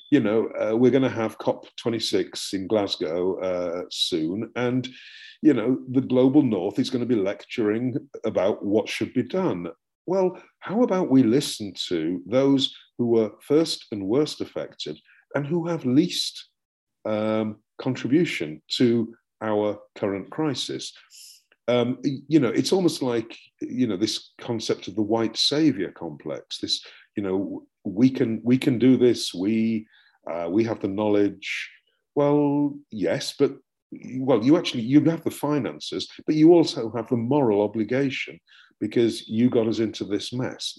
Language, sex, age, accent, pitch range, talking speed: English, male, 50-69, British, 110-145 Hz, 155 wpm